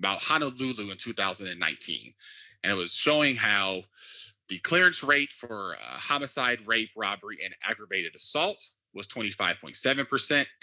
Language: English